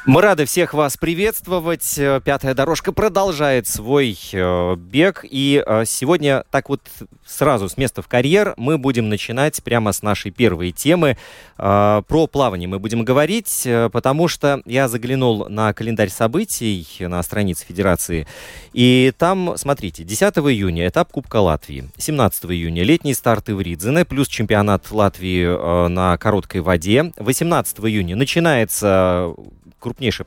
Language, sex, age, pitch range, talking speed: Russian, male, 30-49, 100-145 Hz, 130 wpm